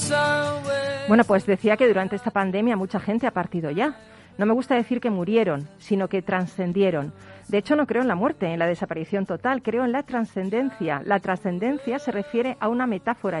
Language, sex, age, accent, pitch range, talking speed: Spanish, female, 40-59, Spanish, 185-235 Hz, 195 wpm